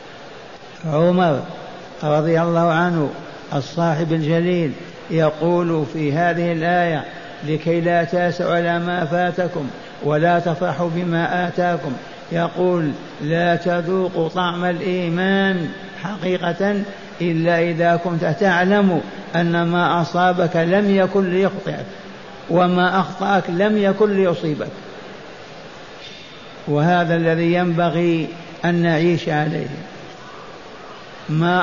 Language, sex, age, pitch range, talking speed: Arabic, male, 60-79, 170-185 Hz, 90 wpm